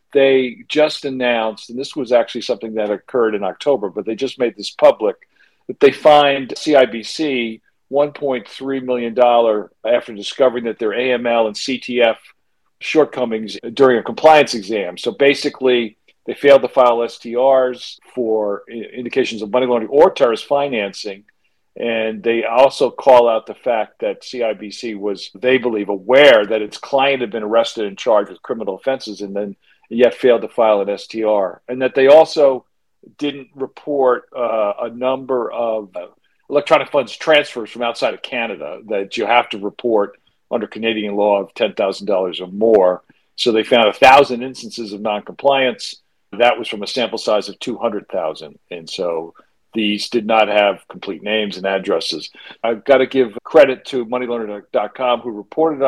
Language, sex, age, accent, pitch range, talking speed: English, male, 50-69, American, 110-135 Hz, 155 wpm